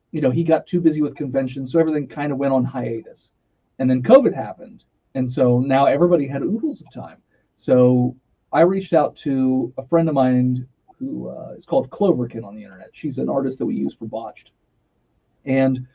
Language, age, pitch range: English, 30-49, 125-165 Hz